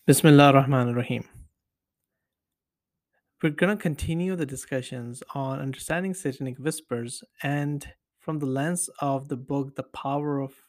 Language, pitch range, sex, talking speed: English, 130-165 Hz, male, 130 wpm